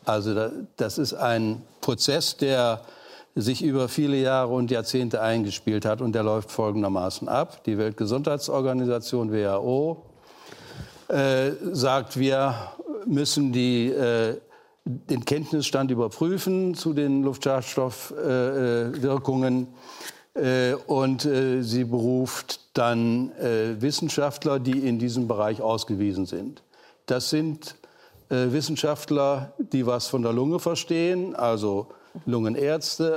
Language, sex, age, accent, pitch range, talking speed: German, male, 60-79, German, 120-140 Hz, 110 wpm